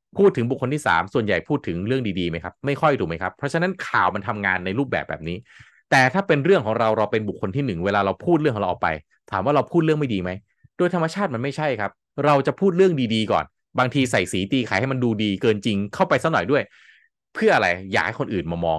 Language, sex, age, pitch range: Thai, male, 20-39, 105-155 Hz